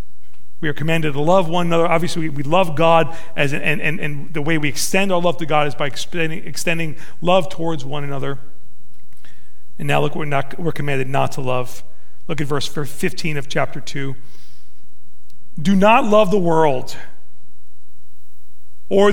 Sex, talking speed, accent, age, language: male, 165 wpm, American, 40-59, English